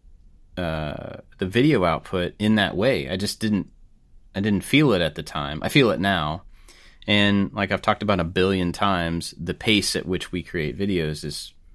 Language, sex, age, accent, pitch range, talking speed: English, male, 30-49, American, 80-105 Hz, 190 wpm